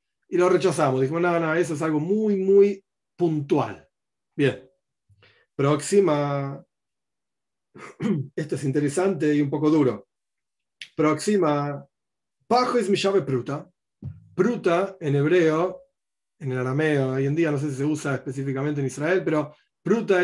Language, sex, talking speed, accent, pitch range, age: Spanish, male, 135 wpm, Argentinian, 140-190 Hz, 40-59